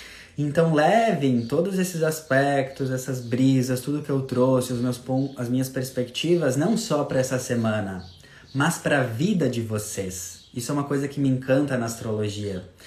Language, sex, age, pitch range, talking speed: Portuguese, male, 20-39, 120-145 Hz, 175 wpm